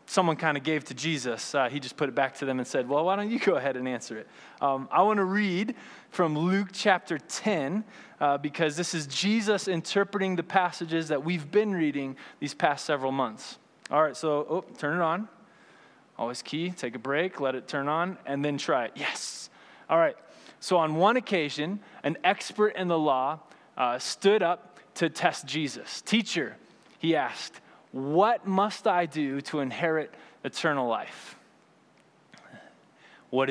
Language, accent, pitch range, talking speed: English, American, 140-195 Hz, 175 wpm